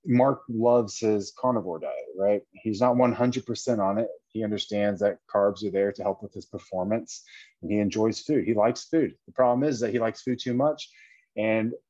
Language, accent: English, American